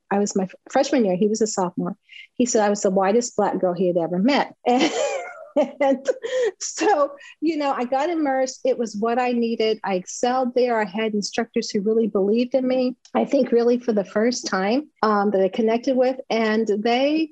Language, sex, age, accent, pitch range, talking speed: English, female, 40-59, American, 185-235 Hz, 205 wpm